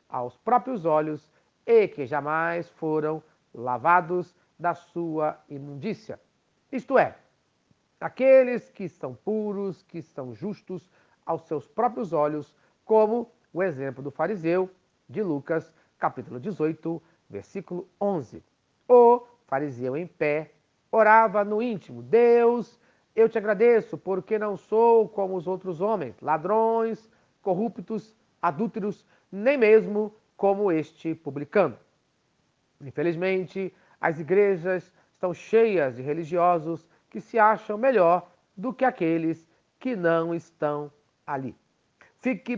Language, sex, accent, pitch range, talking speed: Portuguese, male, Brazilian, 155-215 Hz, 115 wpm